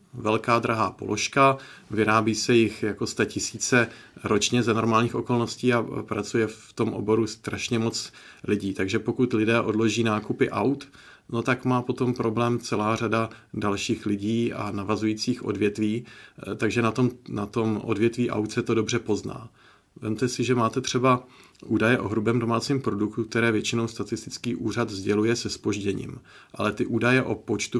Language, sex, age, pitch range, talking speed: Czech, male, 40-59, 105-125 Hz, 150 wpm